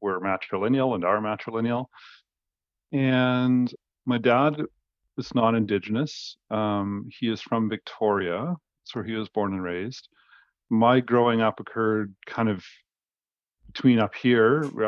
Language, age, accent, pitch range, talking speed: English, 40-59, American, 95-115 Hz, 130 wpm